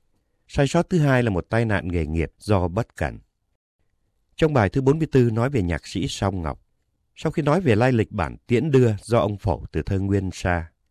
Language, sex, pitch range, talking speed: Vietnamese, male, 85-120 Hz, 215 wpm